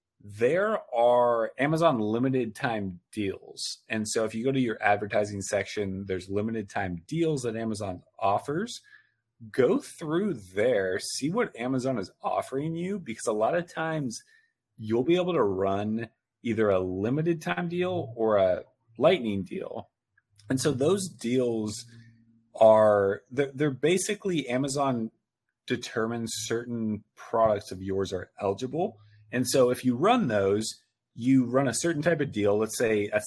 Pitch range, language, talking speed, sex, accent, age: 105-135 Hz, English, 150 wpm, male, American, 30-49